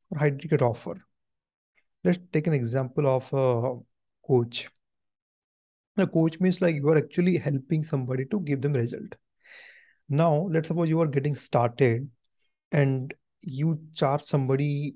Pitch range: 135-165 Hz